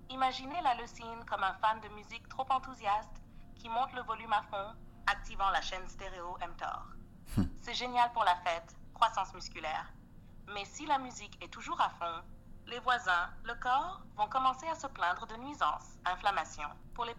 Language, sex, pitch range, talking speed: French, female, 180-250 Hz, 175 wpm